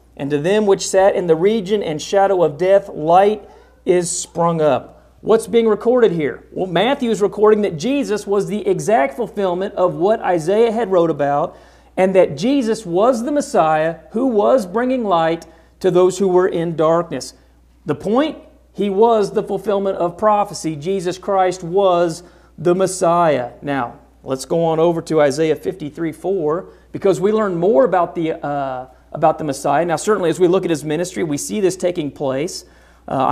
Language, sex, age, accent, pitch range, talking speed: English, male, 40-59, American, 150-195 Hz, 175 wpm